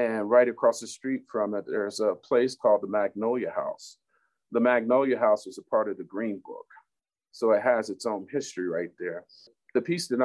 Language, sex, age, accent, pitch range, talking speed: English, male, 40-59, American, 105-135 Hz, 205 wpm